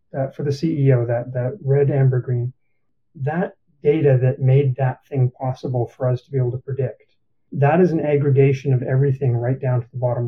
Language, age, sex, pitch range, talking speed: English, 30-49, male, 125-140 Hz, 200 wpm